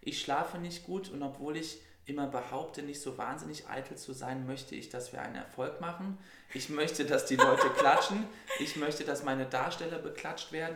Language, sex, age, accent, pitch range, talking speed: German, male, 20-39, German, 120-155 Hz, 195 wpm